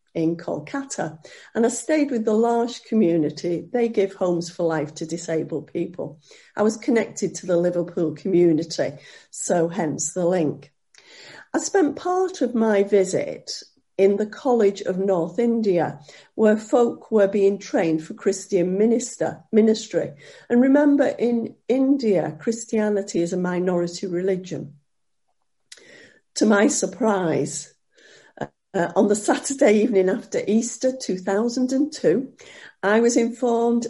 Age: 50-69